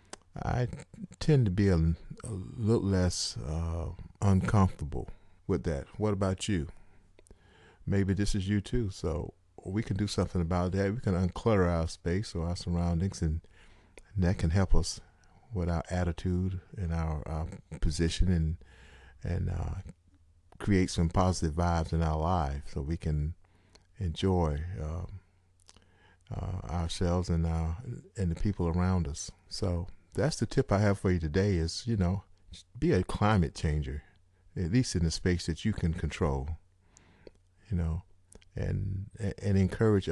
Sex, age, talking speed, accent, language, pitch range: male, 40-59, 155 wpm, American, English, 85-95 Hz